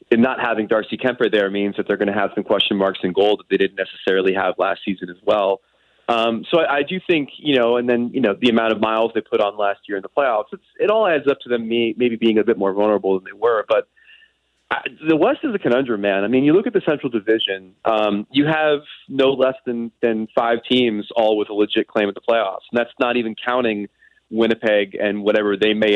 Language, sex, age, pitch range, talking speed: English, male, 30-49, 105-125 Hz, 245 wpm